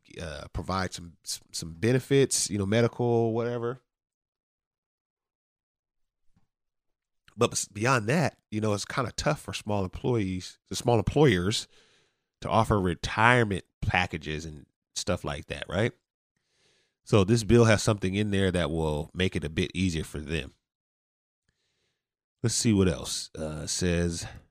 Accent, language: American, English